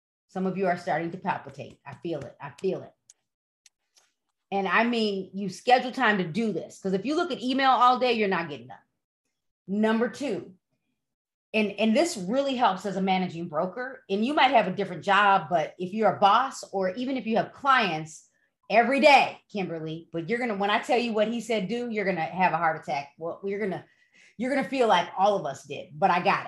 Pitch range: 180-240 Hz